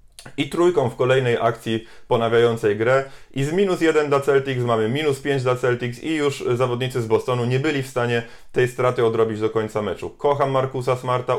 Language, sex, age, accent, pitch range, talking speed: Polish, male, 20-39, native, 120-135 Hz, 190 wpm